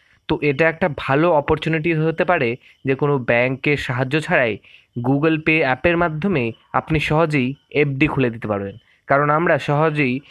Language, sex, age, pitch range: Bengali, male, 20-39, 130-160 Hz